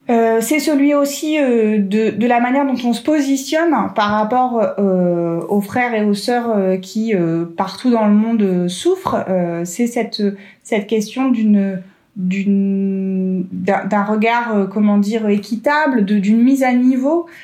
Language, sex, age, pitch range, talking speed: French, female, 30-49, 195-235 Hz, 170 wpm